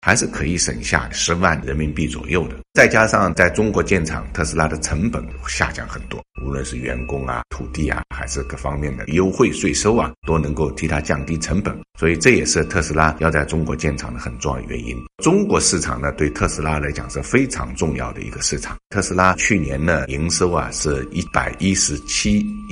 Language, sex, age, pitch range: Chinese, male, 60-79, 70-90 Hz